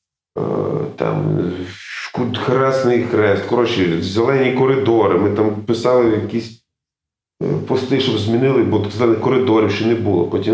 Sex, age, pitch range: male, 30-49, 100-125 Hz